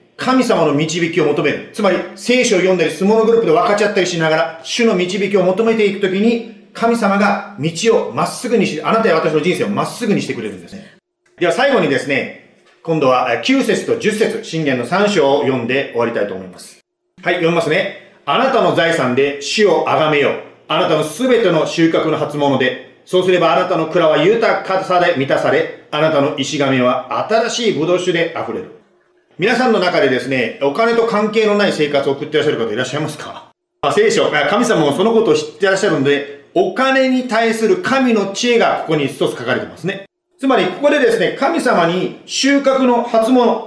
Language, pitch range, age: Japanese, 165-235 Hz, 40-59